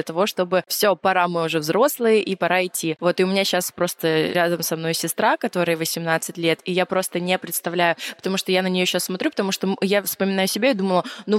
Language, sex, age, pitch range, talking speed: Russian, female, 20-39, 175-215 Hz, 230 wpm